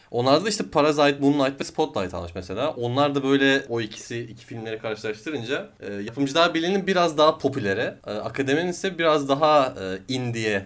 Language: Turkish